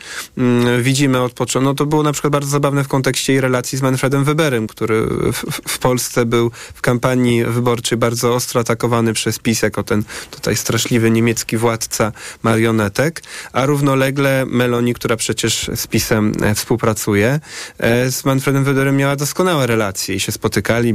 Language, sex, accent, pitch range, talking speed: Polish, male, native, 115-135 Hz, 150 wpm